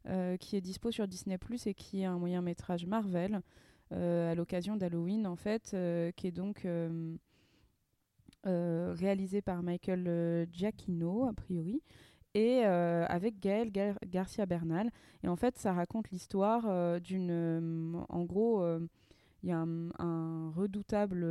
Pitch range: 170-200 Hz